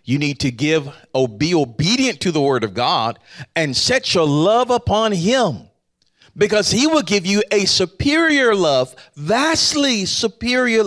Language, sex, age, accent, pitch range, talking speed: English, male, 40-59, American, 130-210 Hz, 155 wpm